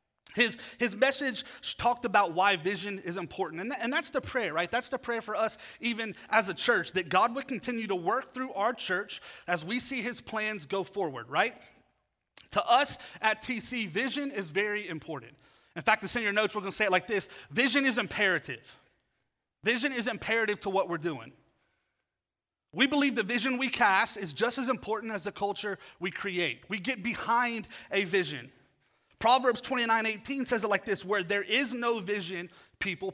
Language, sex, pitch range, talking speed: English, male, 195-250 Hz, 190 wpm